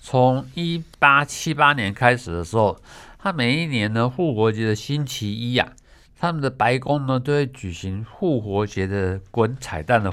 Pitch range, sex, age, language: 110-145 Hz, male, 60-79, Chinese